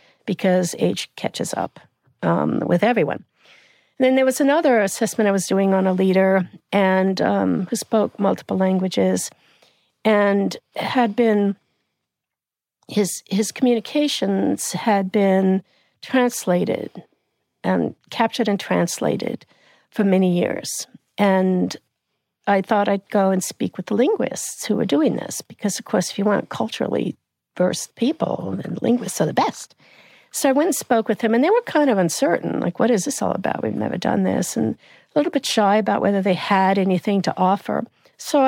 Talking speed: 160 wpm